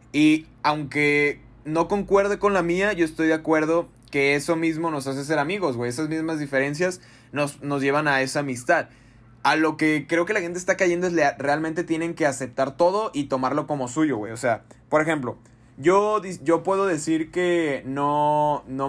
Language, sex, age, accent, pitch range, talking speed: Spanish, male, 20-39, Mexican, 135-165 Hz, 190 wpm